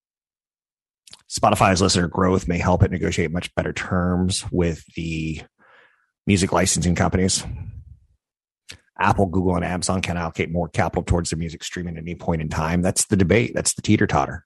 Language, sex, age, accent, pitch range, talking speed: English, male, 30-49, American, 85-100 Hz, 160 wpm